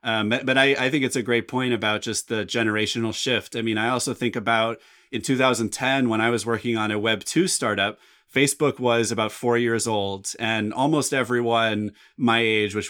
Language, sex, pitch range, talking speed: English, male, 110-140 Hz, 195 wpm